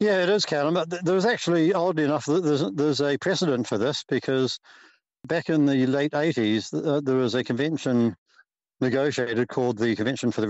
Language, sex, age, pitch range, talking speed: English, male, 60-79, 120-145 Hz, 175 wpm